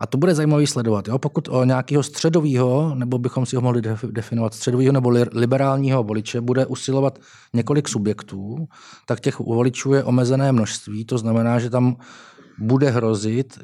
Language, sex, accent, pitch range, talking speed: Czech, male, native, 115-135 Hz, 160 wpm